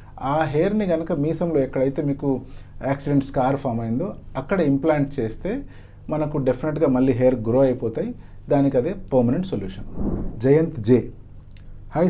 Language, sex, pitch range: English, male, 115-165 Hz